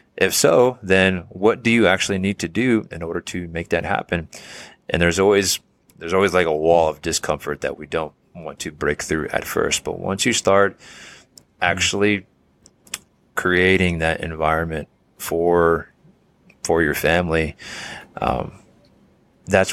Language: English